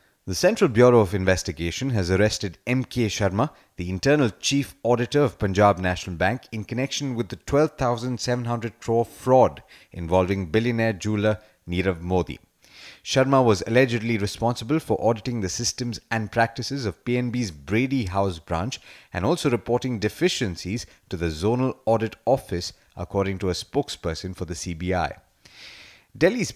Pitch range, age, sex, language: 95-125 Hz, 30-49, male, English